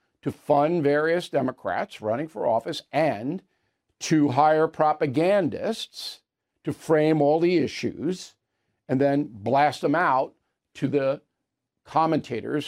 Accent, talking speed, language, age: American, 115 wpm, English, 50-69